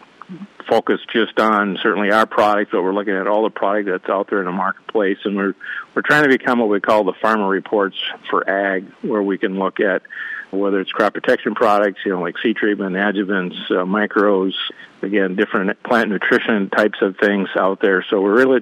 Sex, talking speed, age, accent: male, 205 wpm, 50-69, American